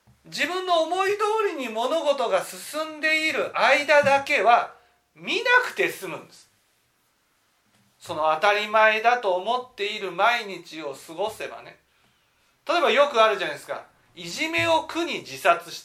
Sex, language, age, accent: male, Japanese, 40-59, native